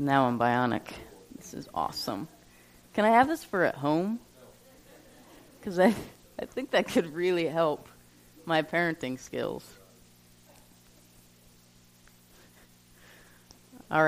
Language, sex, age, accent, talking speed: English, female, 30-49, American, 105 wpm